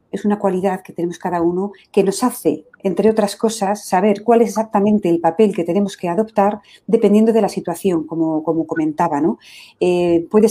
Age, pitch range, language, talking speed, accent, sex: 40-59, 180-215 Hz, Spanish, 190 wpm, Spanish, female